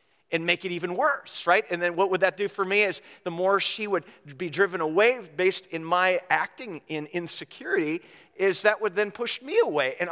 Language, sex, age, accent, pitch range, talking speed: English, male, 50-69, American, 155-200 Hz, 215 wpm